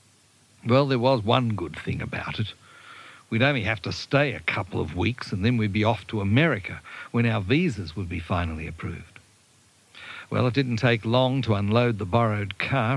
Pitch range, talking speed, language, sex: 110-135 Hz, 190 wpm, English, male